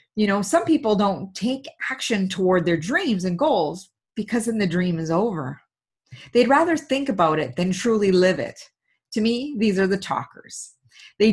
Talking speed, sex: 180 wpm, female